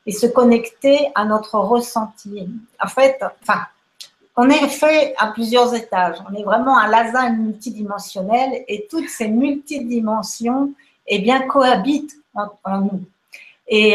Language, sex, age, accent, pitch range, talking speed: French, female, 50-69, French, 195-255 Hz, 140 wpm